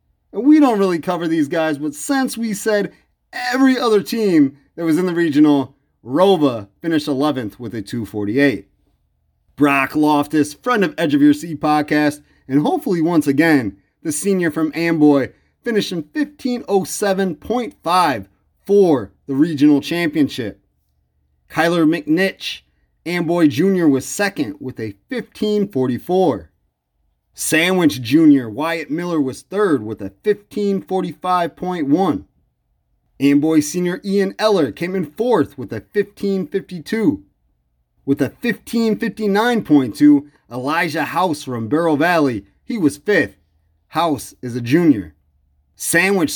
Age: 30-49